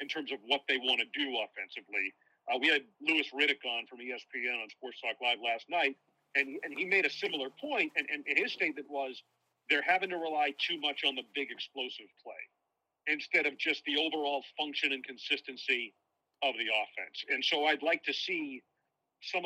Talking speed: 195 wpm